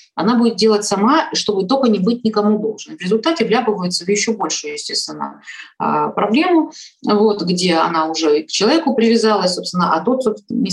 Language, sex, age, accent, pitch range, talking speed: Russian, female, 20-39, native, 170-220 Hz, 160 wpm